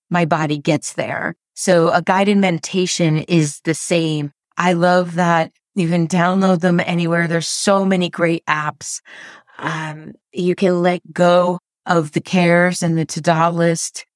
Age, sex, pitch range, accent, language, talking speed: 30-49, female, 160-185 Hz, American, English, 155 wpm